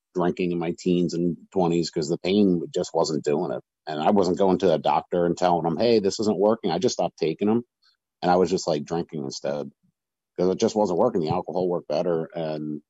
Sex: male